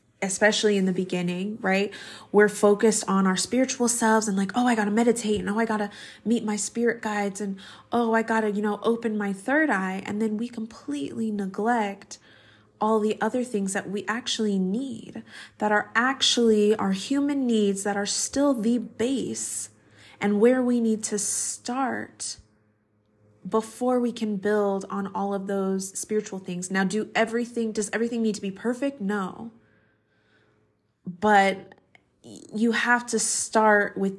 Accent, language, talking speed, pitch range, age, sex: American, English, 165 wpm, 195-230 Hz, 20-39, female